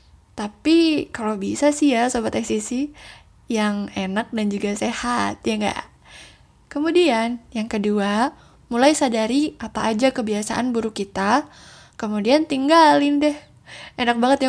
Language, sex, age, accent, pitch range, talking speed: Indonesian, female, 10-29, native, 215-255 Hz, 125 wpm